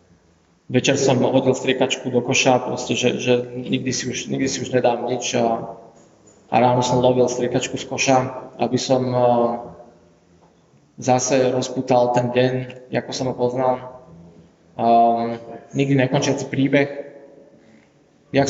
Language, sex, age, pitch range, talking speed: Slovak, male, 20-39, 125-135 Hz, 125 wpm